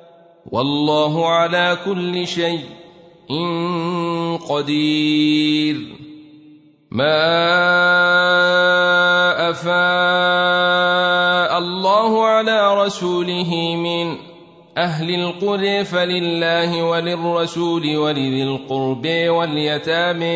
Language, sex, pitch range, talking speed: Arabic, male, 165-180 Hz, 55 wpm